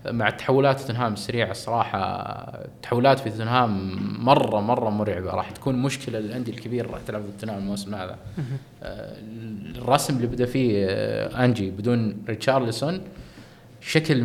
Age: 20-39